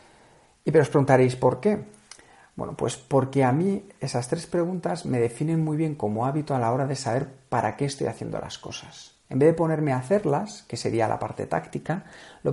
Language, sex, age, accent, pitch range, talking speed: Spanish, male, 50-69, Spanish, 115-155 Hz, 205 wpm